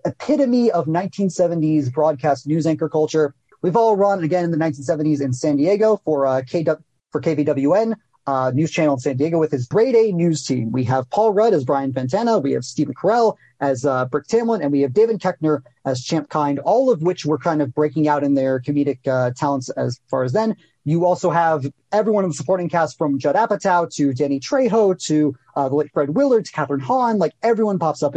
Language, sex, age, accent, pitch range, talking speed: English, male, 30-49, American, 140-185 Hz, 215 wpm